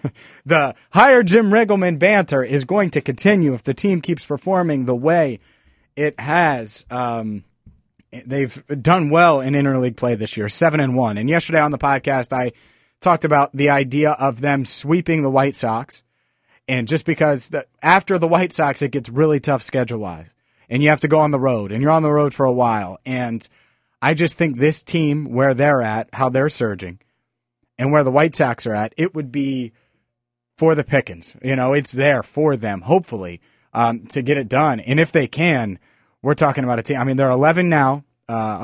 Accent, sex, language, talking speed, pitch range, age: American, male, English, 200 wpm, 120-155 Hz, 30-49